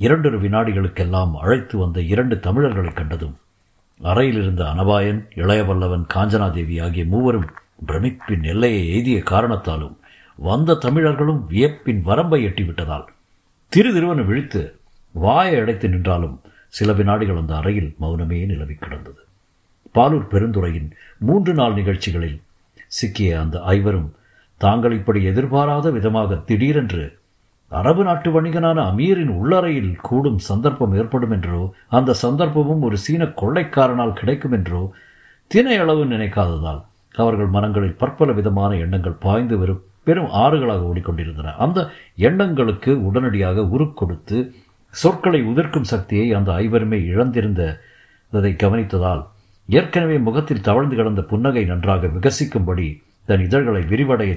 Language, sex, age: Tamil, male, 50-69